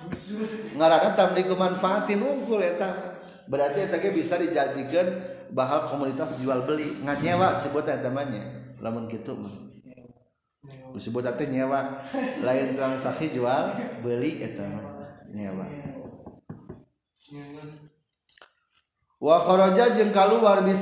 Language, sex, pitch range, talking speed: Indonesian, male, 125-185 Hz, 120 wpm